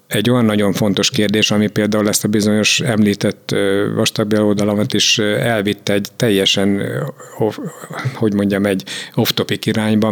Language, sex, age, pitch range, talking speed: Hungarian, male, 50-69, 100-110 Hz, 130 wpm